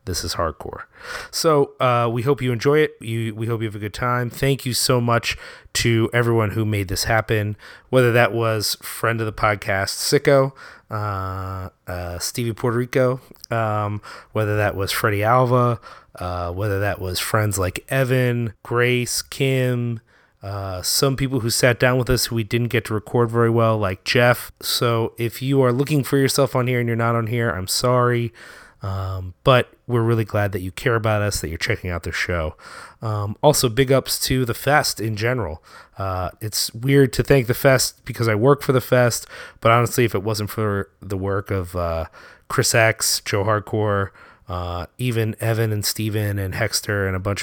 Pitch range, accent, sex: 100-125 Hz, American, male